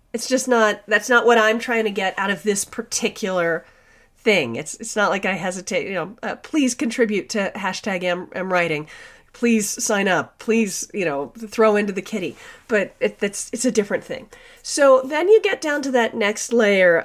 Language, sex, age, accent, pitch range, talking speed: English, female, 40-59, American, 190-255 Hz, 195 wpm